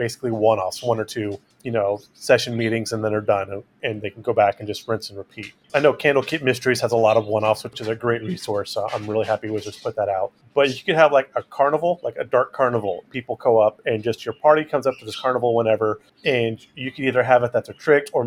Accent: American